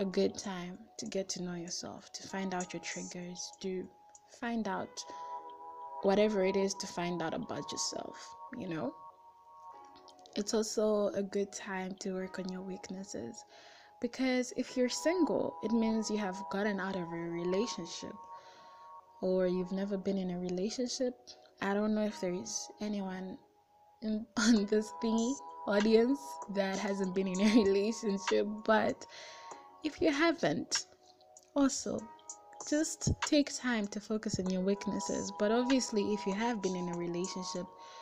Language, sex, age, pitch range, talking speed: English, female, 10-29, 185-210 Hz, 150 wpm